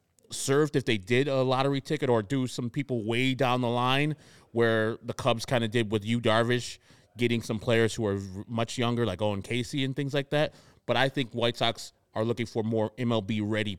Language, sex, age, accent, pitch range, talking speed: English, male, 30-49, American, 105-125 Hz, 215 wpm